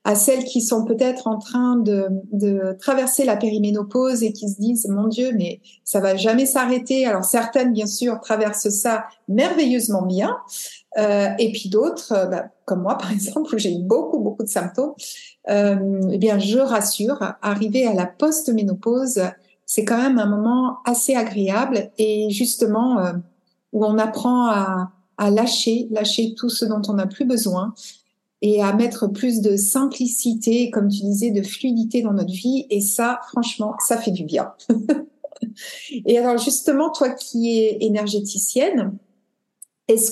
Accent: French